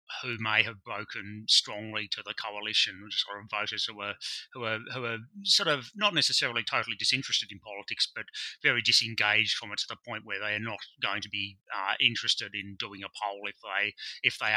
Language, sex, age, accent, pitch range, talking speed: English, male, 30-49, British, 105-125 Hz, 205 wpm